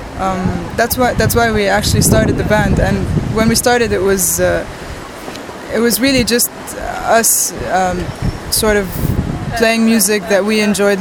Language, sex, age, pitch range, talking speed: English, female, 20-39, 195-225 Hz, 165 wpm